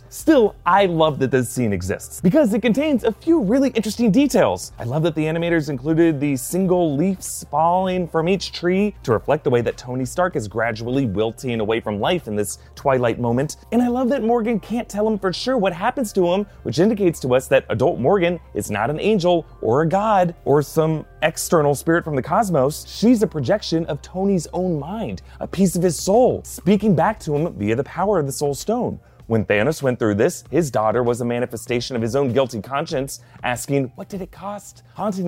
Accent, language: American, English